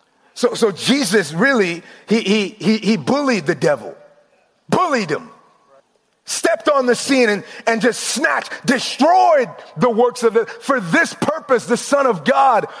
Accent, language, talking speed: American, English, 150 wpm